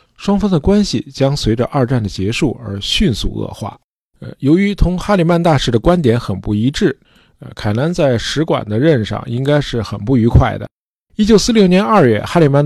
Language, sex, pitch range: Chinese, male, 115-170 Hz